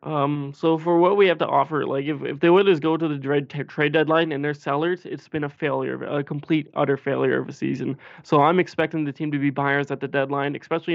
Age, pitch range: 20-39, 140-160 Hz